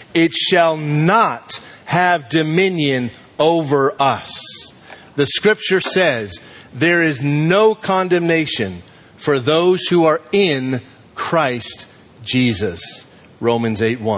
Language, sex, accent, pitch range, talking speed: English, male, American, 115-170 Hz, 95 wpm